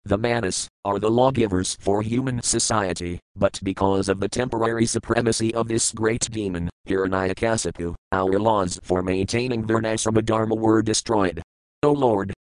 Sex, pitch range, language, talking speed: male, 95-125 Hz, English, 140 wpm